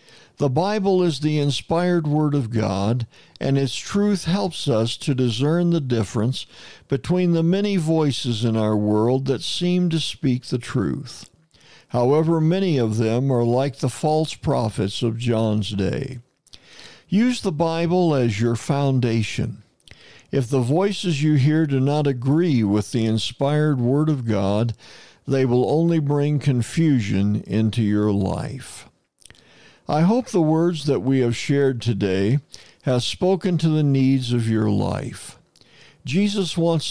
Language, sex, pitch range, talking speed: English, male, 120-160 Hz, 145 wpm